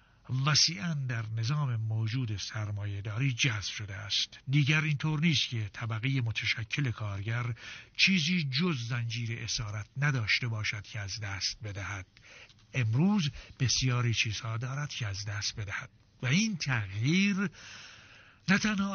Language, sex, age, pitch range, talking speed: Persian, male, 60-79, 110-145 Hz, 120 wpm